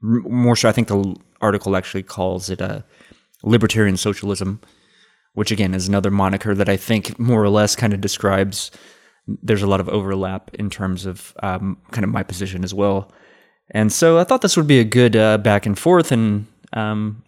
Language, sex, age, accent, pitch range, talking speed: English, male, 20-39, American, 100-120 Hz, 195 wpm